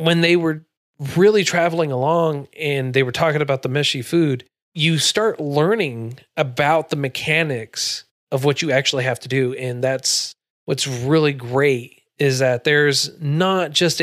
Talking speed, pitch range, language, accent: 160 wpm, 130-160 Hz, English, American